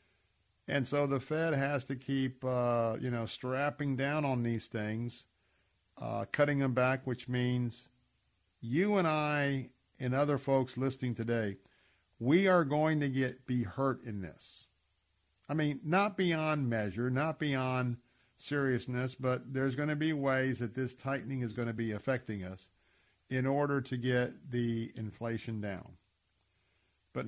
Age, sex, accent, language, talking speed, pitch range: 50-69, male, American, English, 150 wpm, 110-145 Hz